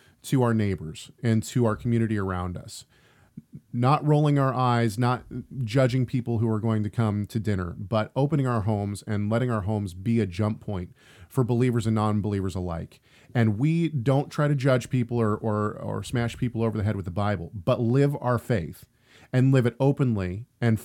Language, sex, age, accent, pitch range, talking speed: English, male, 40-59, American, 105-135 Hz, 195 wpm